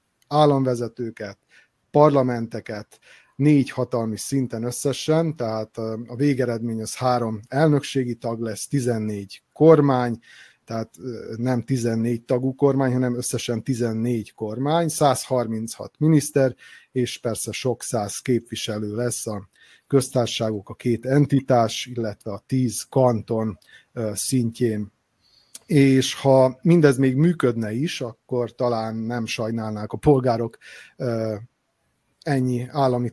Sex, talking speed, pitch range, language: male, 105 wpm, 110-130 Hz, Hungarian